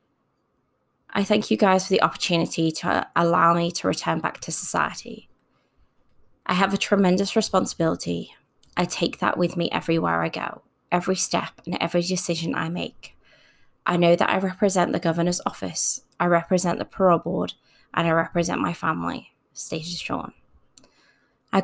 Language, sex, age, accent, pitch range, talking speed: English, female, 20-39, British, 165-190 Hz, 150 wpm